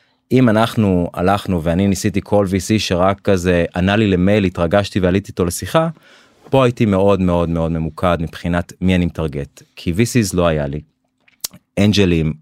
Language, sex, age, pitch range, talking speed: Hebrew, male, 30-49, 85-105 Hz, 155 wpm